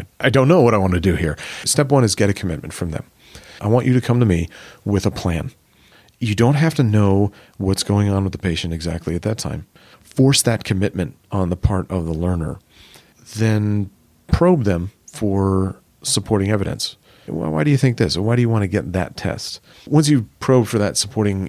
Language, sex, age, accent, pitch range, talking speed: English, male, 40-59, American, 90-110 Hz, 210 wpm